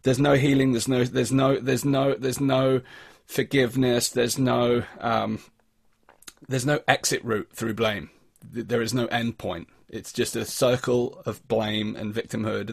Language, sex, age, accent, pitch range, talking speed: English, male, 30-49, British, 110-130 Hz, 160 wpm